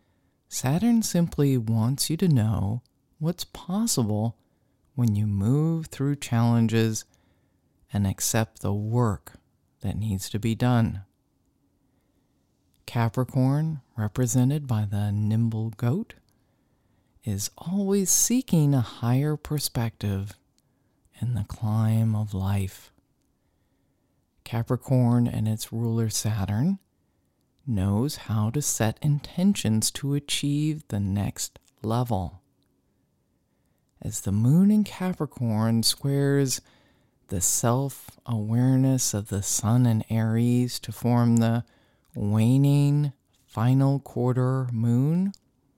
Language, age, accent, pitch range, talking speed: English, 50-69, American, 110-135 Hz, 95 wpm